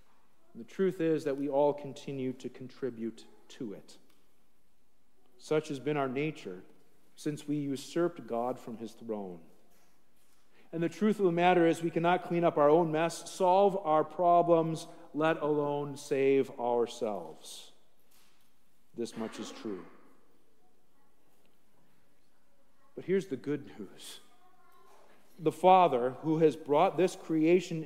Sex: male